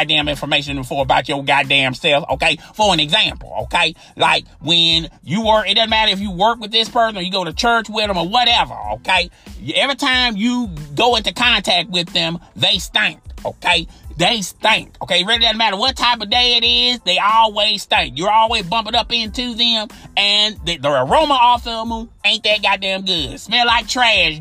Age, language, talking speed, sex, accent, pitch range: 30-49, English, 200 wpm, male, American, 180-240 Hz